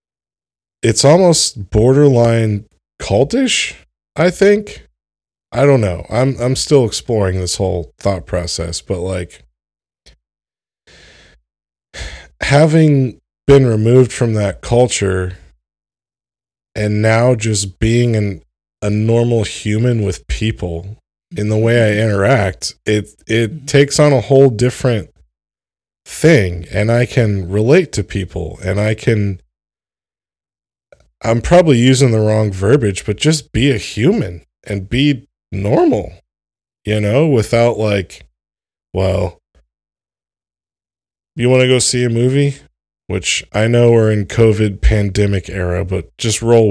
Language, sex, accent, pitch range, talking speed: English, male, American, 90-120 Hz, 120 wpm